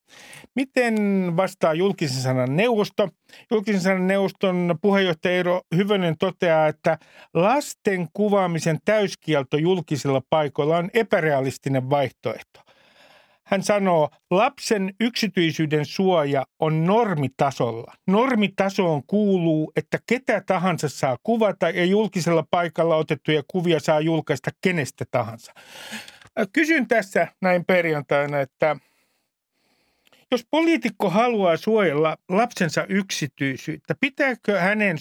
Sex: male